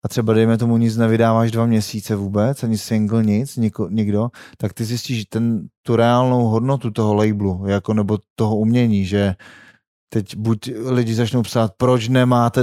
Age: 30-49